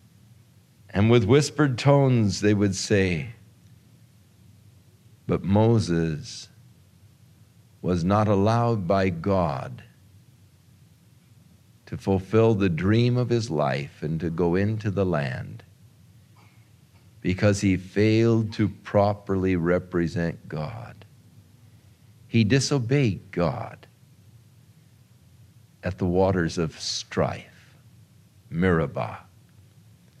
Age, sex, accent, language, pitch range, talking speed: 50-69, male, American, English, 100-125 Hz, 85 wpm